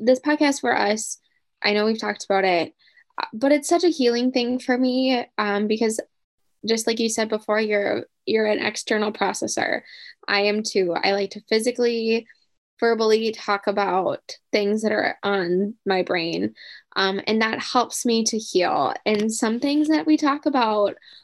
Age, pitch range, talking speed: 10-29, 205-240 Hz, 170 wpm